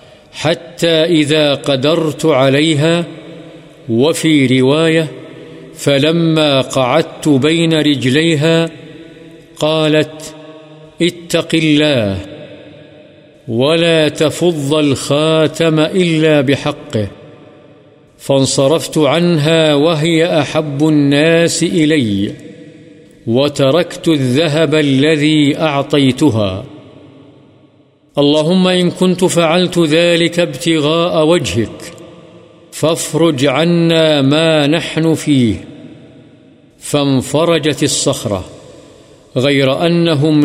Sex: male